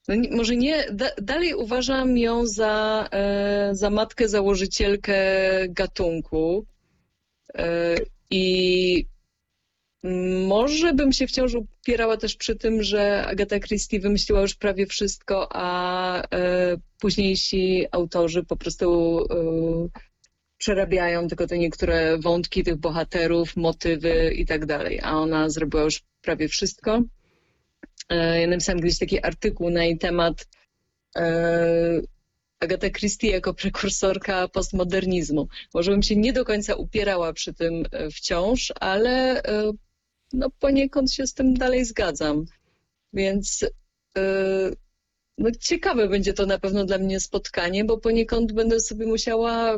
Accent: native